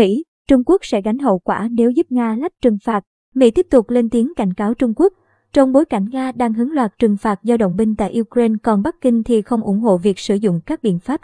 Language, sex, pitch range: Vietnamese, male, 215-260 Hz